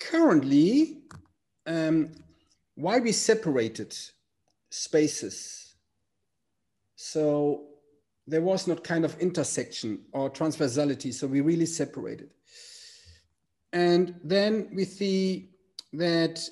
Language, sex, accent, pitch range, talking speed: English, male, German, 140-185 Hz, 85 wpm